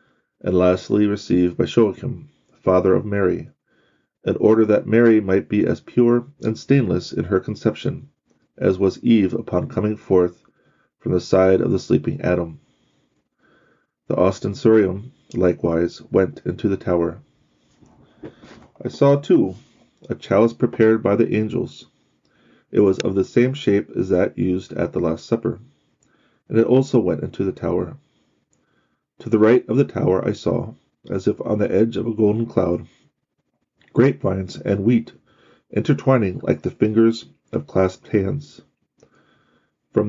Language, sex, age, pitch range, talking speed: English, male, 30-49, 95-115 Hz, 145 wpm